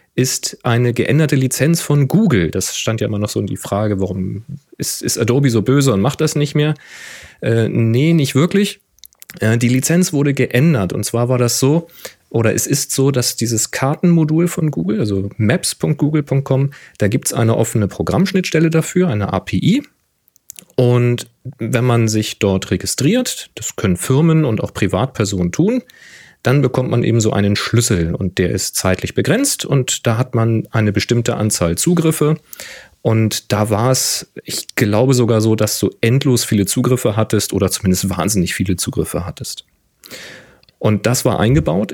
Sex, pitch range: male, 105-145 Hz